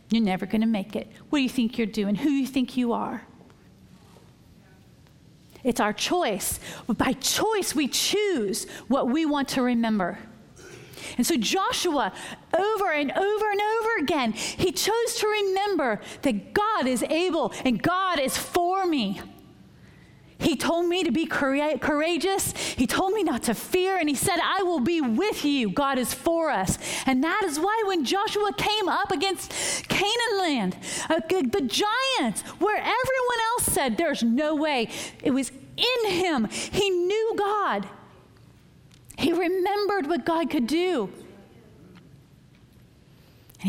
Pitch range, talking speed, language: 250-385 Hz, 150 wpm, English